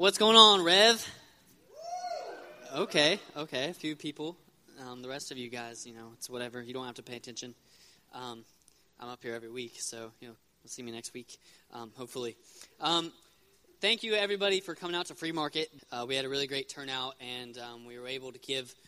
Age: 20-39